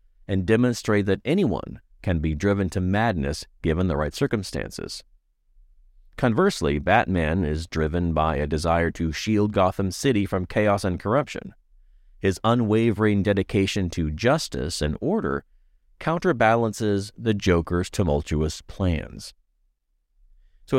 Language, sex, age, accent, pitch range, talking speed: English, male, 40-59, American, 80-115 Hz, 120 wpm